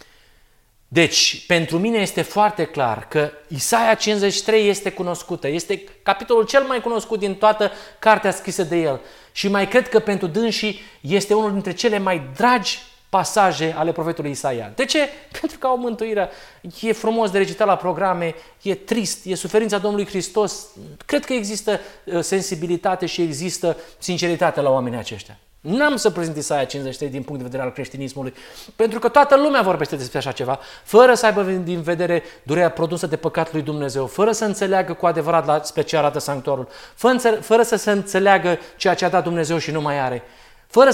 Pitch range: 160-215 Hz